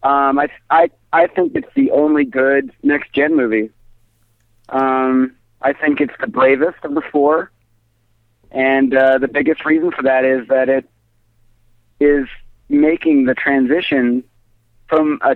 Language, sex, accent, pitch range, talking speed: English, male, American, 115-145 Hz, 140 wpm